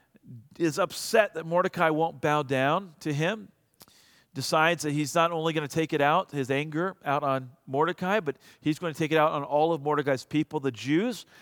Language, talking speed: English, 200 wpm